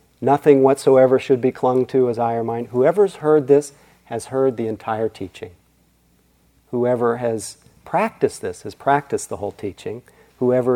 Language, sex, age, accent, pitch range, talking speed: English, male, 40-59, American, 115-160 Hz, 155 wpm